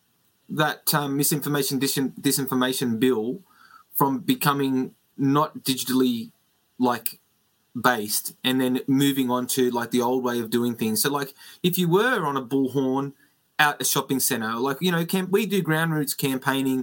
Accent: Australian